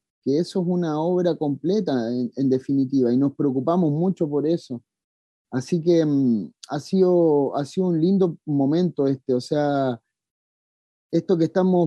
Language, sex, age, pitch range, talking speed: English, male, 30-49, 125-150 Hz, 155 wpm